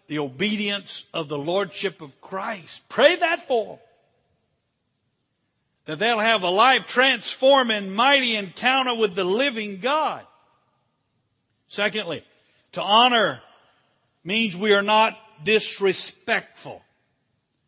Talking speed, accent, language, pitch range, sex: 105 wpm, American, English, 130-205 Hz, male